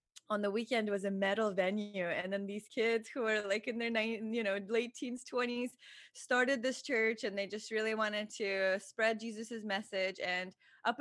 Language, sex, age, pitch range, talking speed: English, female, 20-39, 200-260 Hz, 195 wpm